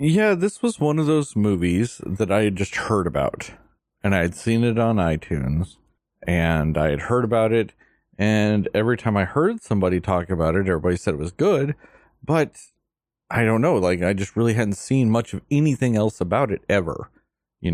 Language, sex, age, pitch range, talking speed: English, male, 30-49, 95-130 Hz, 195 wpm